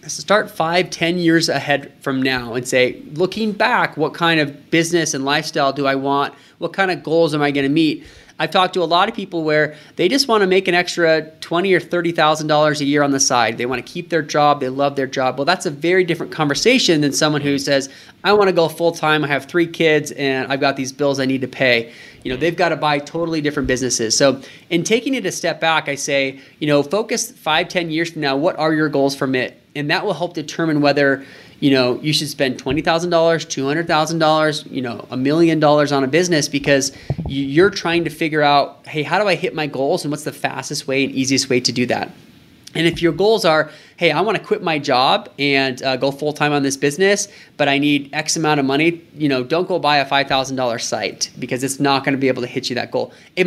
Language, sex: English, male